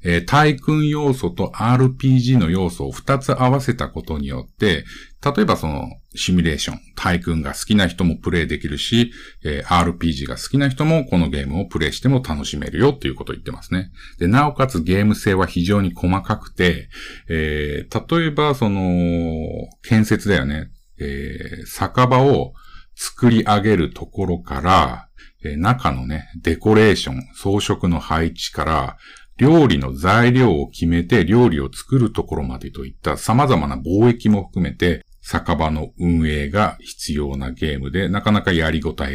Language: Japanese